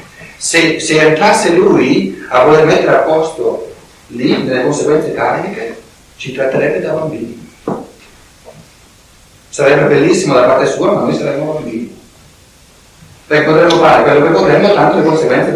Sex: male